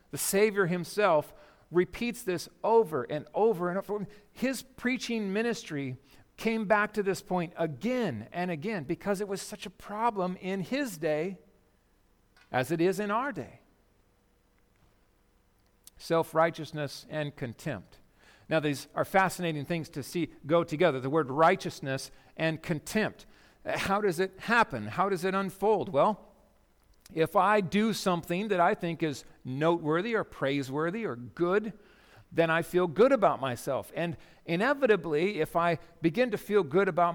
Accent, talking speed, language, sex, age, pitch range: American, 145 wpm, English, male, 50-69, 150-205 Hz